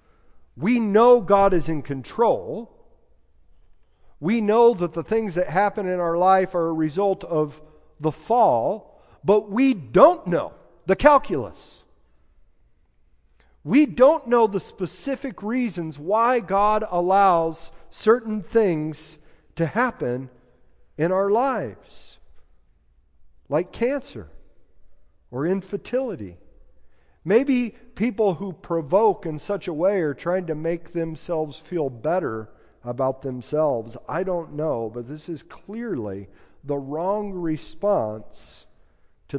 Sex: male